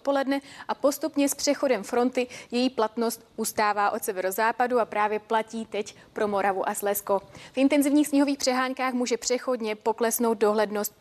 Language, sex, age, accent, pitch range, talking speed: Czech, female, 20-39, native, 210-250 Hz, 140 wpm